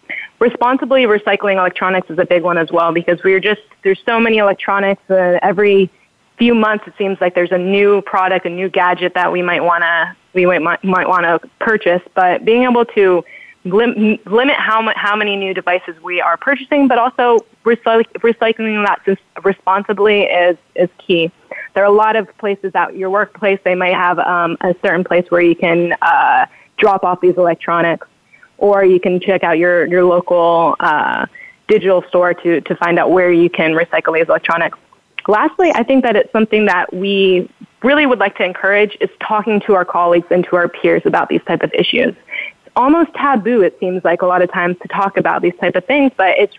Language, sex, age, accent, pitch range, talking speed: English, female, 20-39, American, 175-215 Hz, 200 wpm